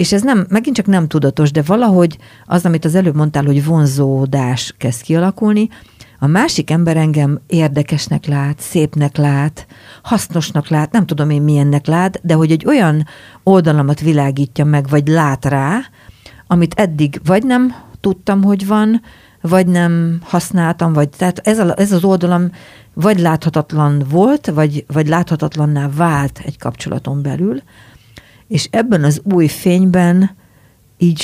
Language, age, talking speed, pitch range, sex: Hungarian, 50-69, 145 wpm, 135-175 Hz, female